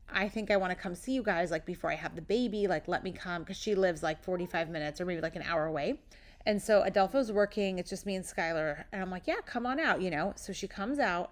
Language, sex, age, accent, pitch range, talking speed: English, female, 30-49, American, 180-220 Hz, 280 wpm